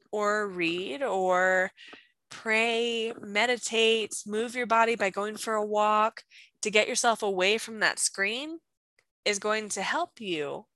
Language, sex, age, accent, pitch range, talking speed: English, female, 20-39, American, 195-260 Hz, 140 wpm